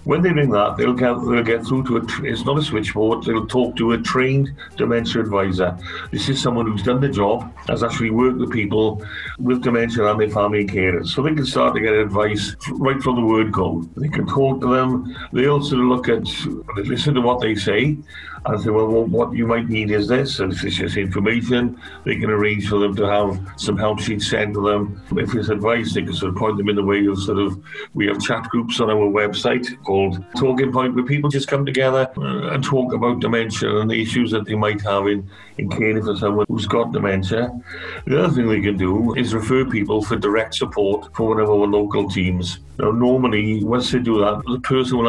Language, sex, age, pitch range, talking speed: English, male, 50-69, 100-125 Hz, 225 wpm